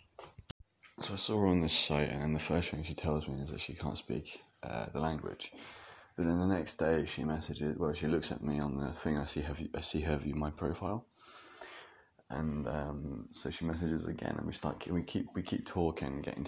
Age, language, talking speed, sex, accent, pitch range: 20-39, English, 225 wpm, male, British, 75-85 Hz